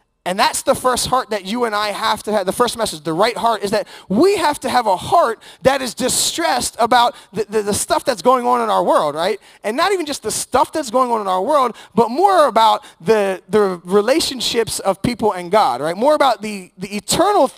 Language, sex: English, male